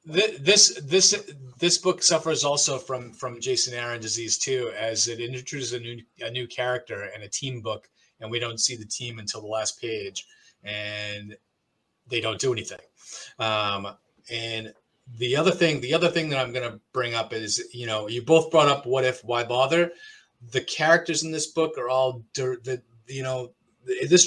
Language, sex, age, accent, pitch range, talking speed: English, male, 30-49, American, 120-145 Hz, 185 wpm